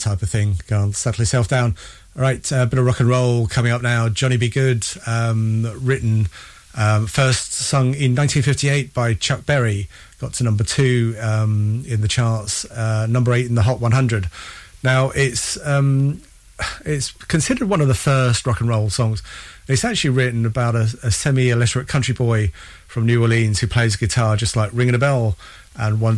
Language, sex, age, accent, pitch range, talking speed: English, male, 30-49, British, 110-130 Hz, 185 wpm